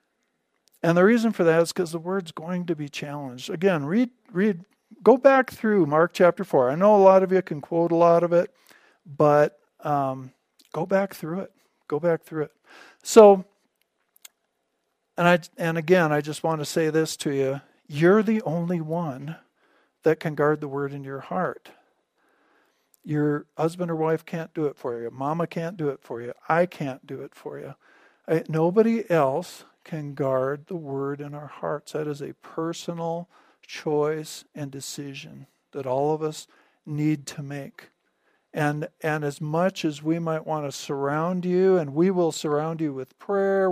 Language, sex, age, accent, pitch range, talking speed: English, male, 50-69, American, 150-180 Hz, 180 wpm